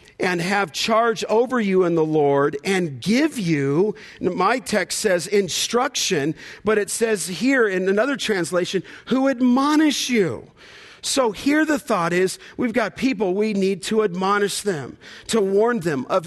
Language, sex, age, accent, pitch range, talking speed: English, male, 50-69, American, 185-235 Hz, 155 wpm